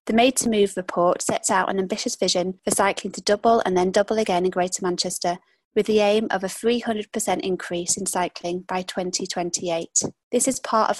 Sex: female